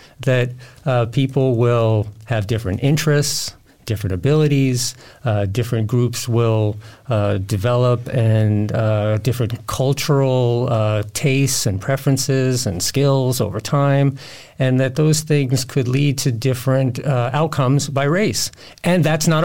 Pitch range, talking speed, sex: 115-135 Hz, 130 wpm, male